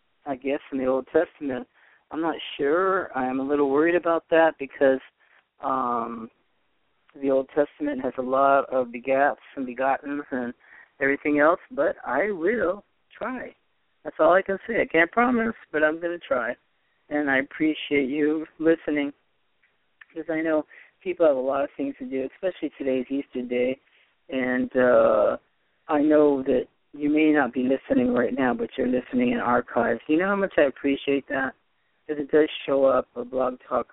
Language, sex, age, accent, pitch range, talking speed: English, male, 40-59, American, 125-155 Hz, 175 wpm